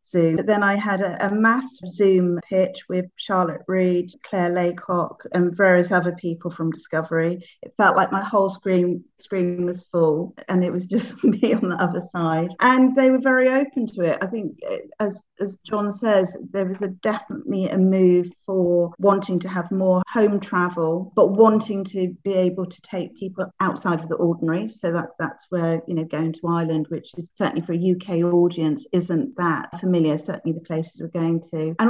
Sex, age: female, 40-59